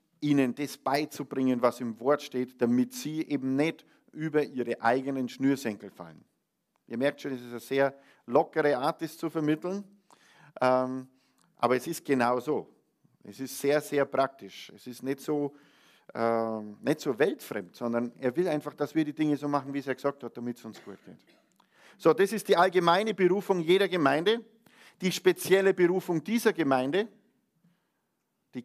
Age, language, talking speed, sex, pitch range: 50-69, German, 165 wpm, male, 125-175 Hz